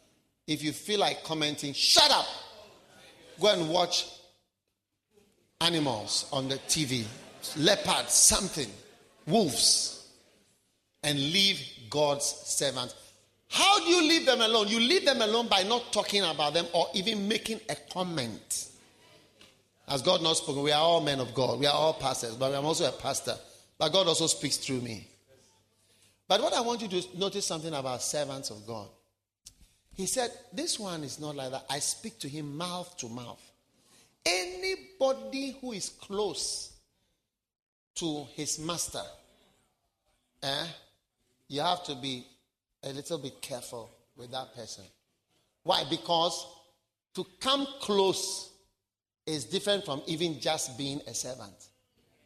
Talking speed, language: 145 wpm, English